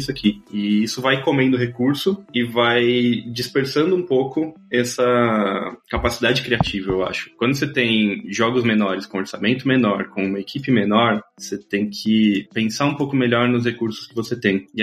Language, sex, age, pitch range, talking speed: Portuguese, male, 20-39, 110-145 Hz, 170 wpm